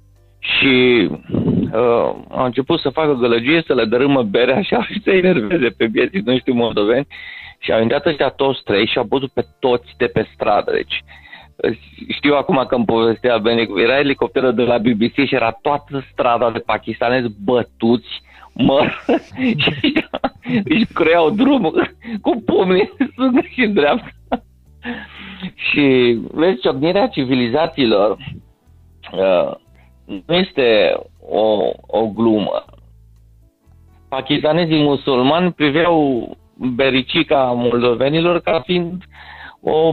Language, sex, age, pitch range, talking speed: Romanian, male, 50-69, 115-170 Hz, 130 wpm